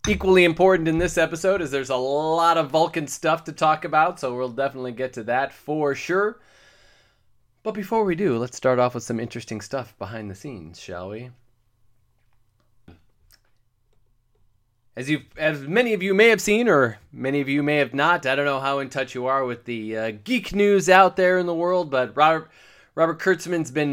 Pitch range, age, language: 120-175 Hz, 30-49, English